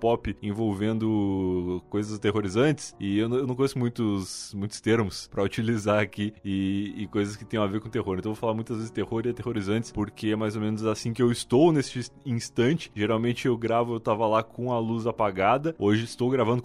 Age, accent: 20-39, Brazilian